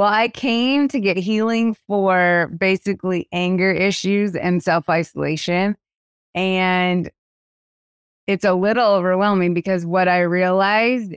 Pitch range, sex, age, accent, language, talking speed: 170-200 Hz, female, 20-39, American, English, 120 wpm